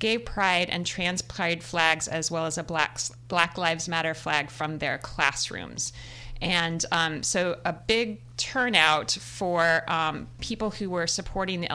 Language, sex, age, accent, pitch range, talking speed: English, female, 30-49, American, 155-185 Hz, 160 wpm